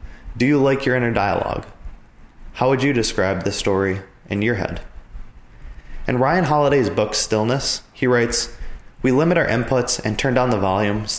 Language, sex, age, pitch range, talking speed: English, male, 20-39, 100-125 Hz, 170 wpm